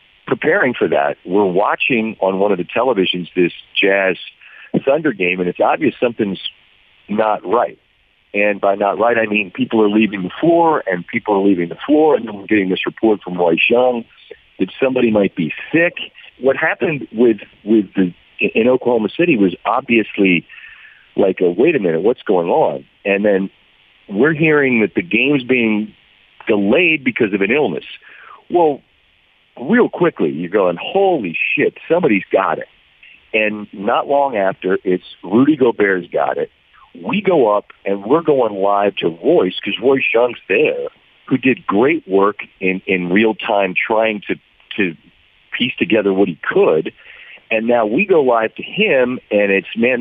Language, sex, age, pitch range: English, male, 50-69, 100-135 Hz